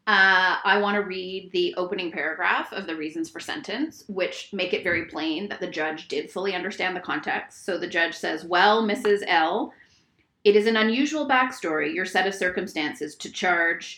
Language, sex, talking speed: English, female, 190 wpm